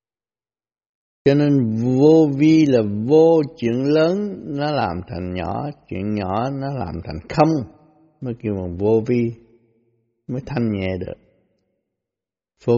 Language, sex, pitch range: Vietnamese, male, 110-135 Hz